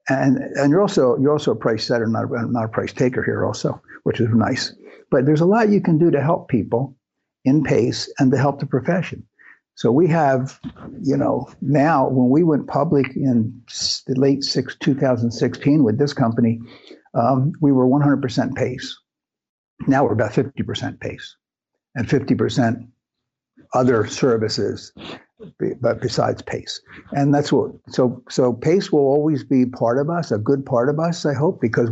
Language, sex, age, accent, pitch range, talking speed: English, male, 60-79, American, 120-140 Hz, 170 wpm